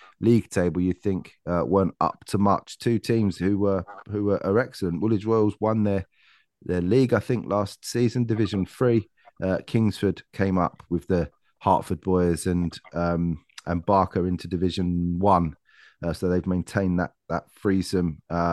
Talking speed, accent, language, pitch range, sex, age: 160 wpm, British, English, 85-100 Hz, male, 30-49